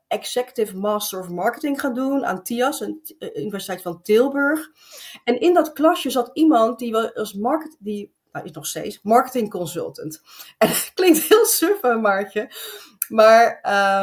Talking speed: 155 wpm